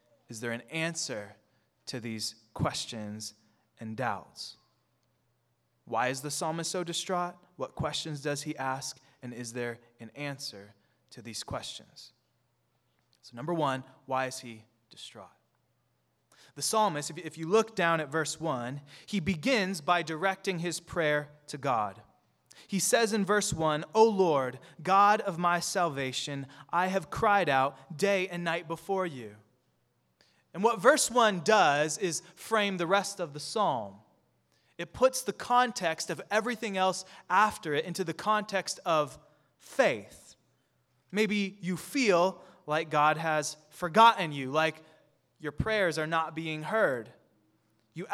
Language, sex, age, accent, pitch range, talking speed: English, male, 20-39, American, 135-190 Hz, 140 wpm